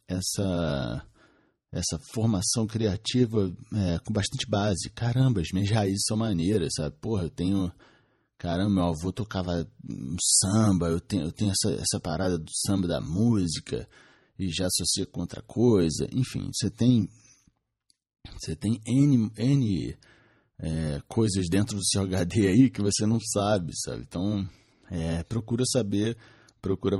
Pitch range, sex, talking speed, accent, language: 90-115 Hz, male, 130 wpm, Brazilian, English